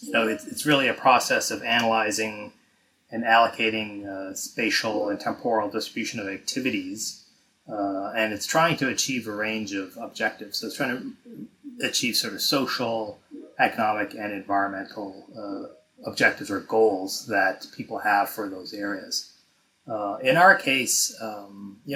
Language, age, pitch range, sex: English, 30-49, 105-160 Hz, male